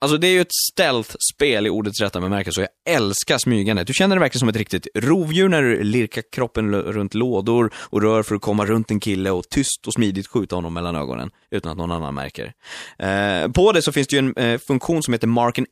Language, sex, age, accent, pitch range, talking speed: Swedish, male, 20-39, native, 90-120 Hz, 250 wpm